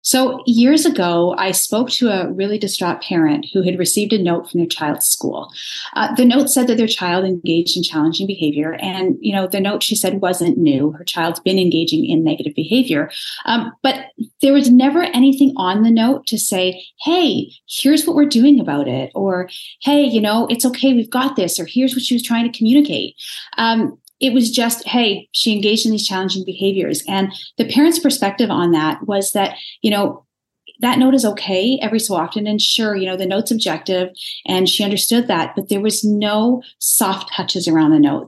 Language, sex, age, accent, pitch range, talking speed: English, female, 30-49, American, 190-260 Hz, 200 wpm